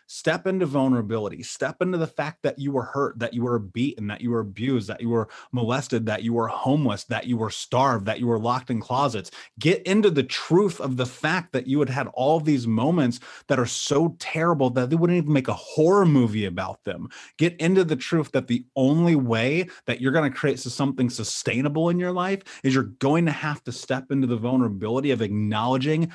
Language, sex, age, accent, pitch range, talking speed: English, male, 30-49, American, 120-150 Hz, 215 wpm